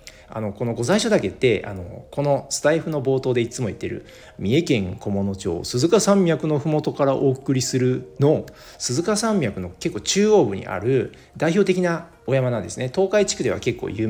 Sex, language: male, Japanese